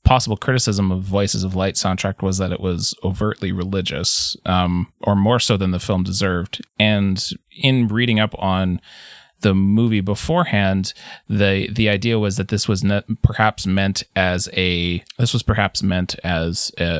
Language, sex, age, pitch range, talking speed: English, male, 20-39, 95-110 Hz, 165 wpm